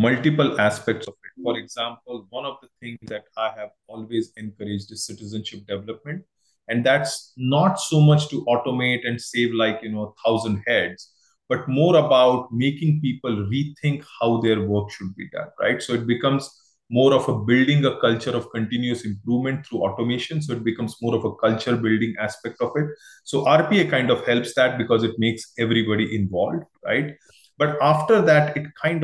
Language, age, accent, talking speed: English, 20-39, Indian, 185 wpm